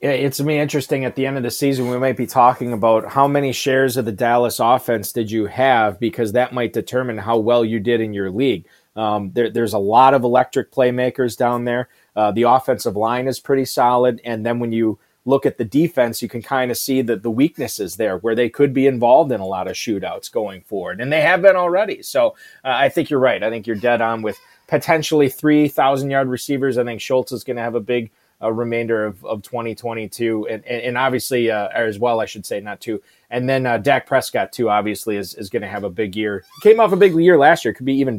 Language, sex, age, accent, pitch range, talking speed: English, male, 30-49, American, 115-140 Hz, 245 wpm